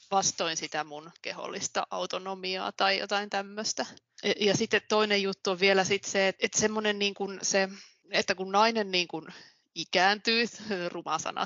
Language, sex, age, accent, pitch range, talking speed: Finnish, female, 20-39, native, 165-210 Hz, 160 wpm